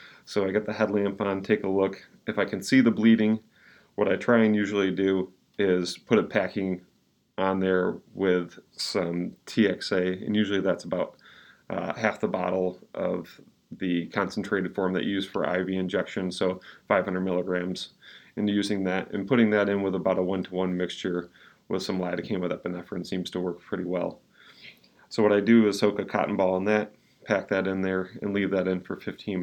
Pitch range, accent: 90-105 Hz, American